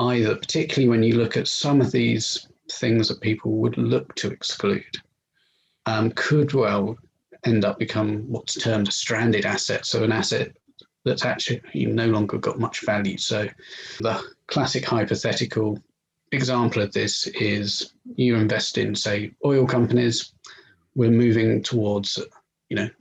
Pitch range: 110-130 Hz